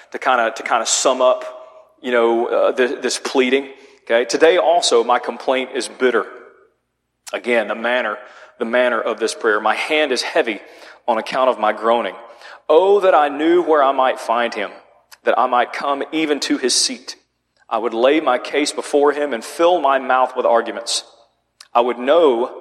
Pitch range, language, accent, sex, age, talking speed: 125-170 Hz, English, American, male, 40-59, 190 wpm